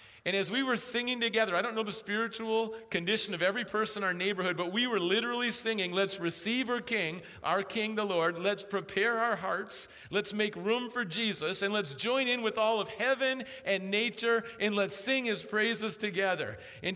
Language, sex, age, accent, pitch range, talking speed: English, male, 50-69, American, 155-220 Hz, 200 wpm